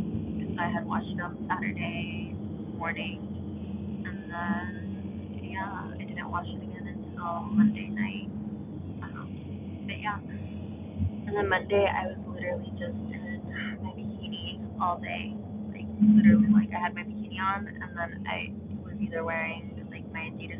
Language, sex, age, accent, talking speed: English, female, 20-39, American, 145 wpm